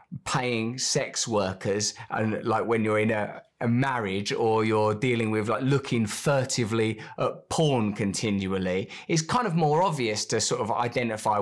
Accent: British